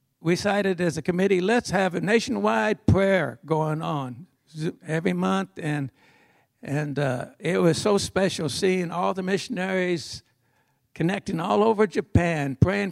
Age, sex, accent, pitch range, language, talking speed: 60-79, male, American, 150-195 Hz, English, 140 wpm